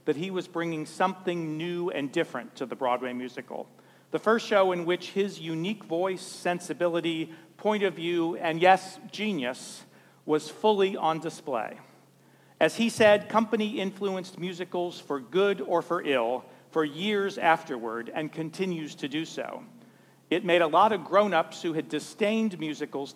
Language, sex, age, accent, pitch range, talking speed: English, male, 40-59, American, 150-185 Hz, 155 wpm